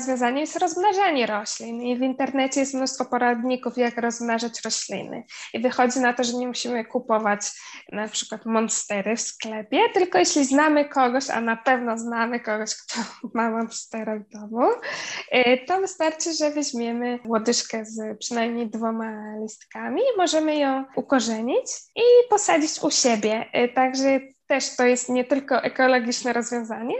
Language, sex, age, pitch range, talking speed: Polish, female, 10-29, 225-270 Hz, 145 wpm